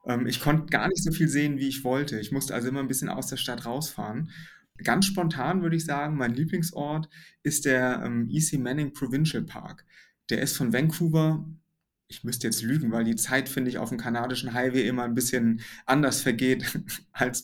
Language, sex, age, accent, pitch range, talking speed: German, male, 30-49, German, 125-160 Hz, 195 wpm